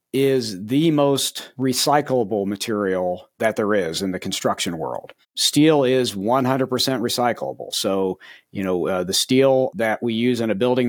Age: 50-69